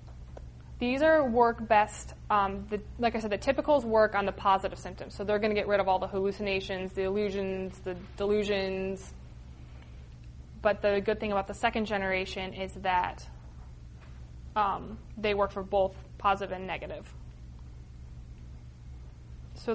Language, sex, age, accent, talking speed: English, female, 20-39, American, 150 wpm